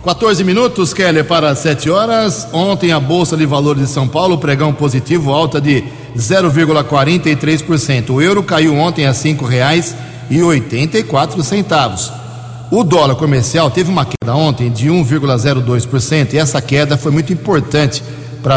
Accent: Brazilian